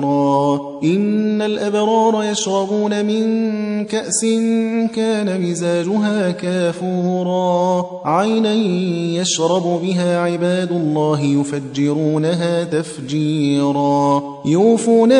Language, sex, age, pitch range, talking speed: Persian, male, 30-49, 150-205 Hz, 65 wpm